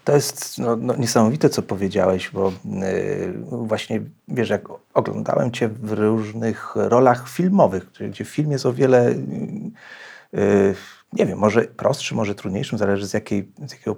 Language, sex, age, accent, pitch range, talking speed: Polish, male, 40-59, native, 105-130 Hz, 150 wpm